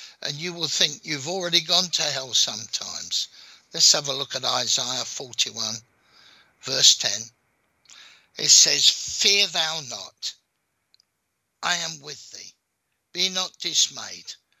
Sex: male